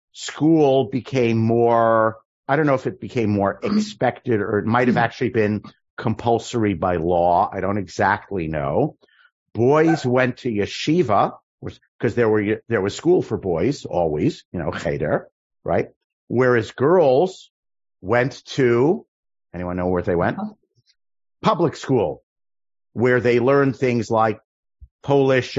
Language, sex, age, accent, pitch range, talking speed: English, male, 50-69, American, 105-135 Hz, 135 wpm